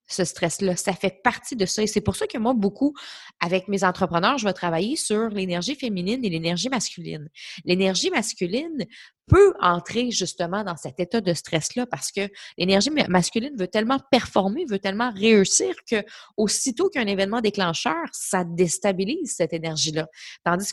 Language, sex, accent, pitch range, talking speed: French, female, Canadian, 180-240 Hz, 160 wpm